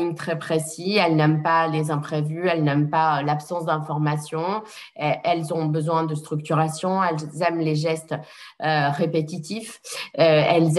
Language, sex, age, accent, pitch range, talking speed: French, female, 20-39, French, 150-170 Hz, 135 wpm